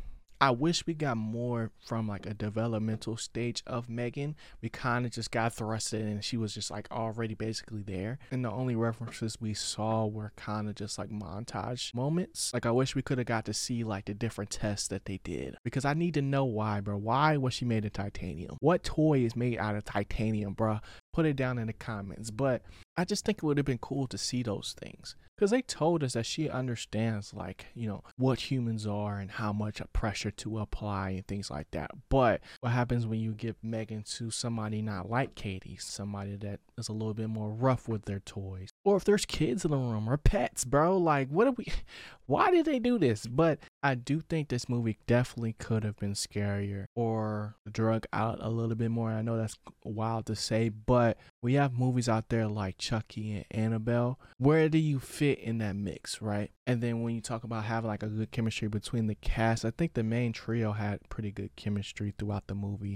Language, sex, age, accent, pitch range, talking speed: English, male, 20-39, American, 105-125 Hz, 215 wpm